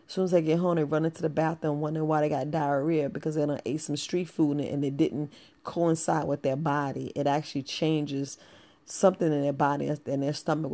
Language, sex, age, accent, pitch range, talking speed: English, female, 40-59, American, 145-170 Hz, 220 wpm